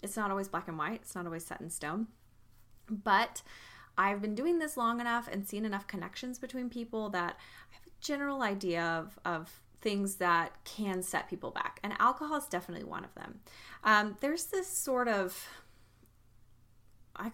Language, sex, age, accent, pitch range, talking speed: English, female, 20-39, American, 165-230 Hz, 180 wpm